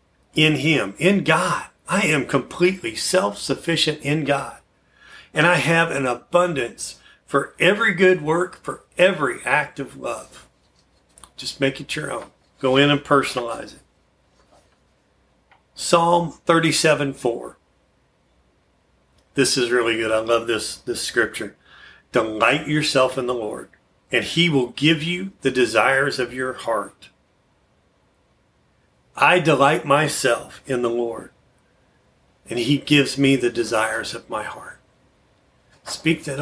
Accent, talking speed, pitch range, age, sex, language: American, 130 wpm, 125-160 Hz, 40-59, male, English